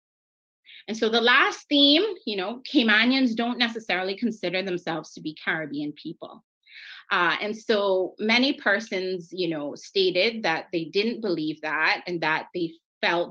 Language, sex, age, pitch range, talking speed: English, female, 30-49, 160-220 Hz, 150 wpm